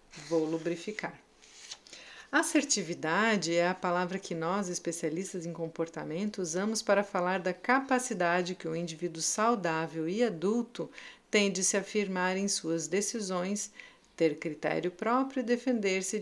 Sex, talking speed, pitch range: female, 125 wpm, 170-225 Hz